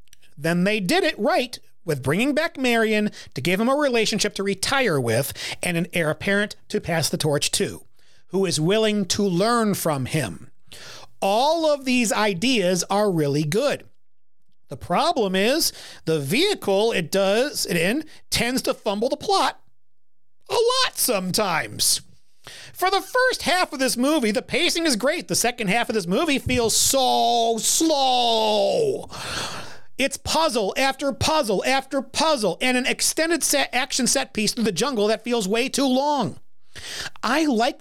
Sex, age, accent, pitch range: male, 40-59, American, 190-270 Hz